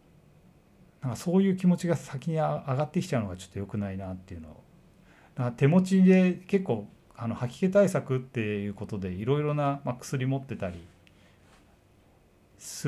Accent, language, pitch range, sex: native, Japanese, 95-145 Hz, male